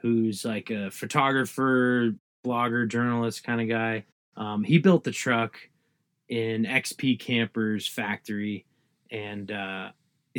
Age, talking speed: 20-39, 115 wpm